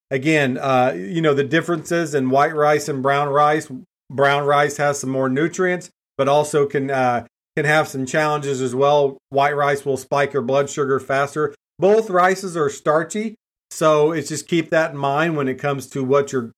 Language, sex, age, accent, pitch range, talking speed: English, male, 40-59, American, 140-170 Hz, 190 wpm